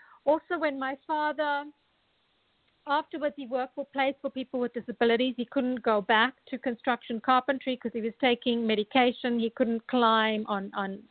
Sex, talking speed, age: female, 160 wpm, 50-69